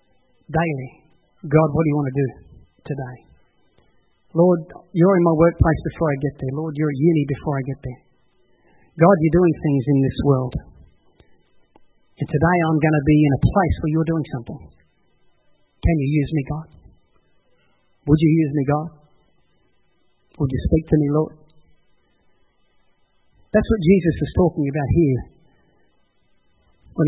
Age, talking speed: 30-49, 155 wpm